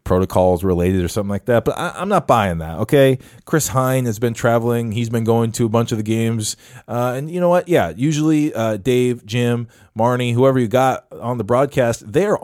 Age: 20-39